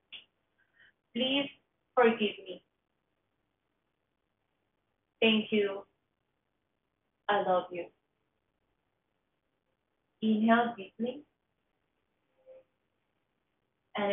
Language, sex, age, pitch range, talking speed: English, female, 30-49, 190-230 Hz, 45 wpm